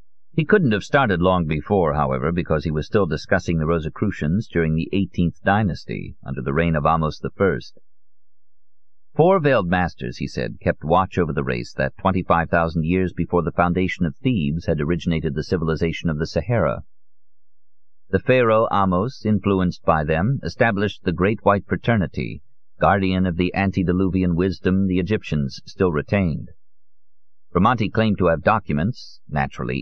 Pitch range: 80-100 Hz